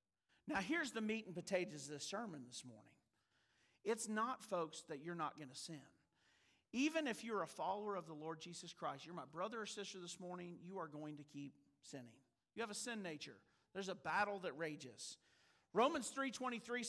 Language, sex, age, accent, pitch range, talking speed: English, male, 50-69, American, 175-285 Hz, 195 wpm